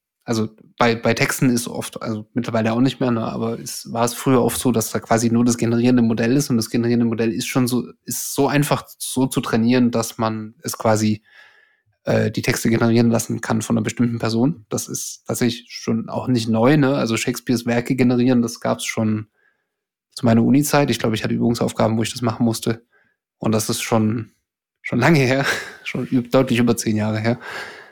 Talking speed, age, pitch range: 205 wpm, 20-39, 115-130 Hz